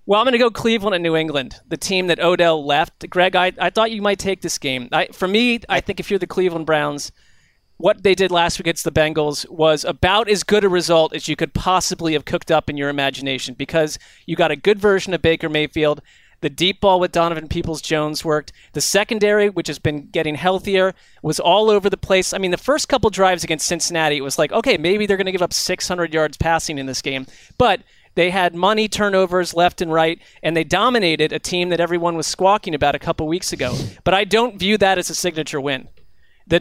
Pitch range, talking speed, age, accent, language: 155-190 Hz, 235 wpm, 30-49, American, English